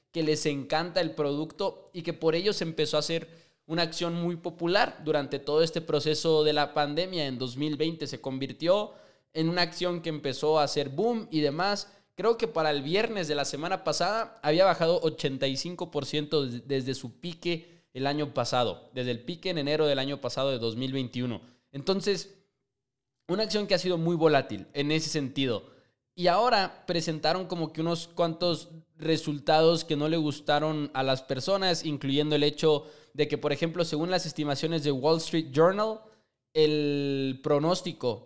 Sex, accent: male, Mexican